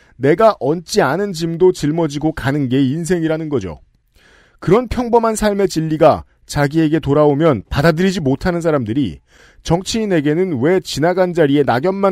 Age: 40-59